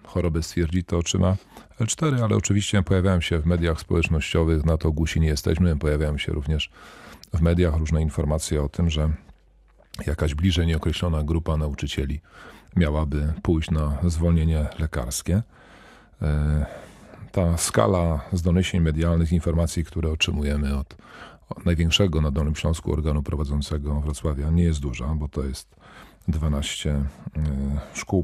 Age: 40-59